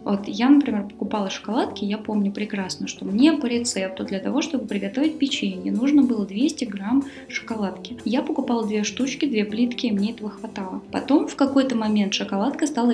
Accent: native